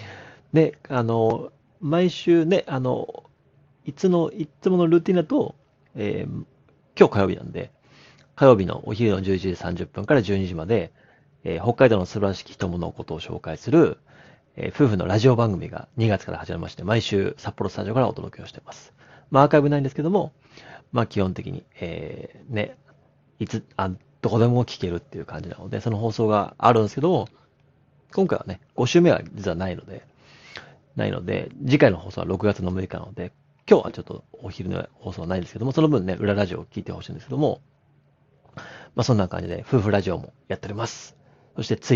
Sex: male